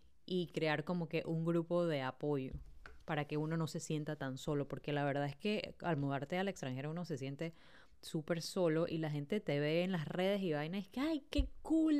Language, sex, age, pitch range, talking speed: Spanish, female, 10-29, 145-185 Hz, 230 wpm